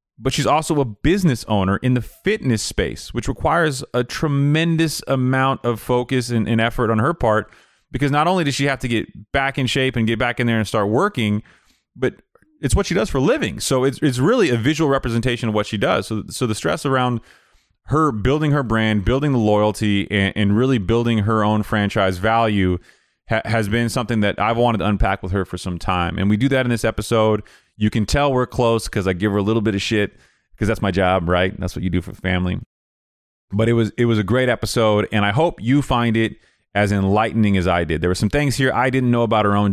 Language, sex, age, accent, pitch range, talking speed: English, male, 30-49, American, 100-125 Hz, 235 wpm